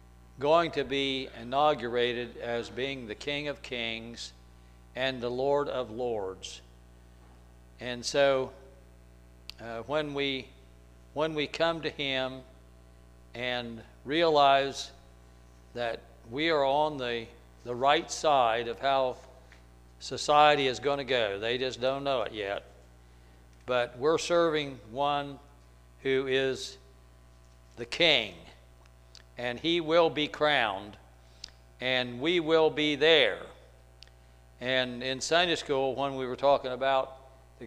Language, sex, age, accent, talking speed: English, male, 60-79, American, 120 wpm